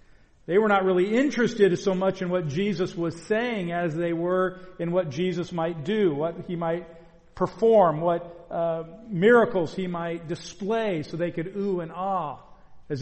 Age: 50-69